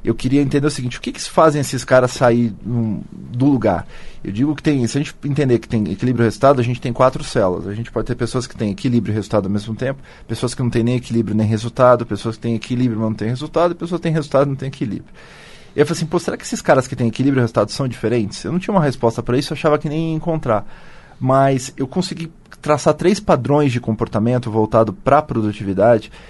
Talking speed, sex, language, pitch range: 255 wpm, male, Portuguese, 115-150 Hz